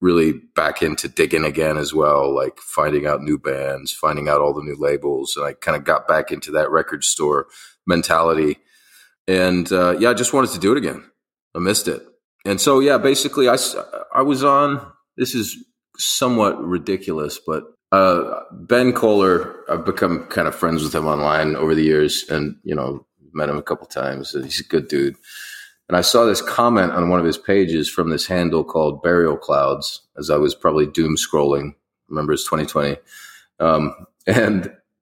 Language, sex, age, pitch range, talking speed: English, male, 30-49, 75-120 Hz, 190 wpm